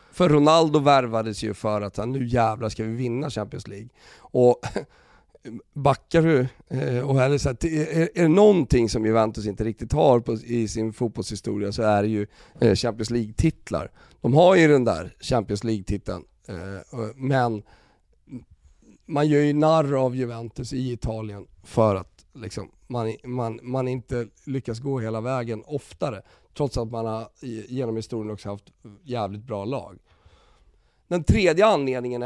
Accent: native